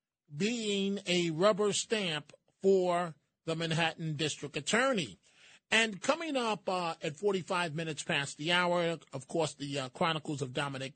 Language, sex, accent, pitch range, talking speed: English, male, American, 155-185 Hz, 140 wpm